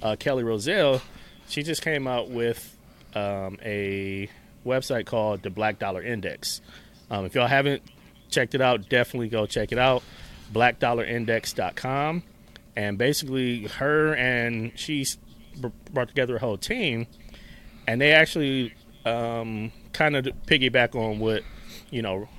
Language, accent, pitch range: English, American, 105-130 Hz